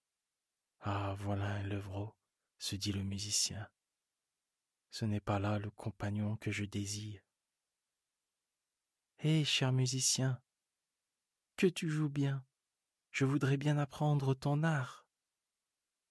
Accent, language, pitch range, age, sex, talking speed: French, French, 105-125 Hz, 40-59, male, 110 wpm